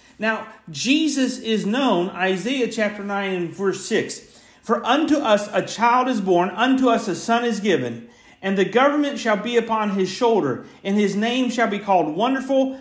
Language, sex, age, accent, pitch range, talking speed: English, male, 50-69, American, 190-250 Hz, 180 wpm